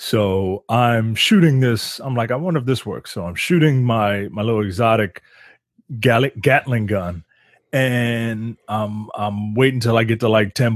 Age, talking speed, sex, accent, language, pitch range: 30-49, 165 wpm, male, American, English, 105-130 Hz